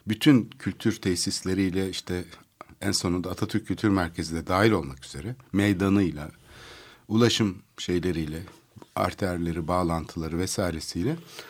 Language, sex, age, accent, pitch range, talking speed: Turkish, male, 60-79, native, 90-120 Hz, 100 wpm